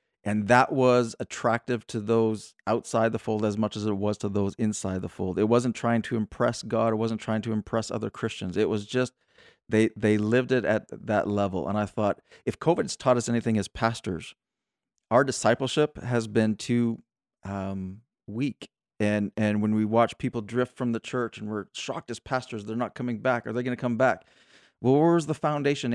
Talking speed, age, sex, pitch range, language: 205 wpm, 40-59, male, 110-125 Hz, English